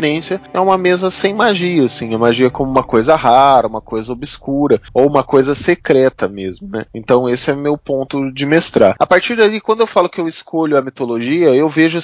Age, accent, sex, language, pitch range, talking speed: 20-39, Brazilian, male, Portuguese, 125-165 Hz, 205 wpm